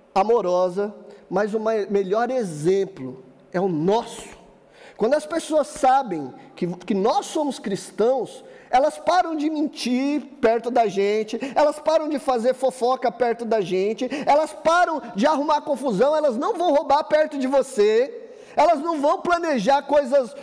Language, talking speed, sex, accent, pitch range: Portuguese, 145 wpm, male, Brazilian, 210-300 Hz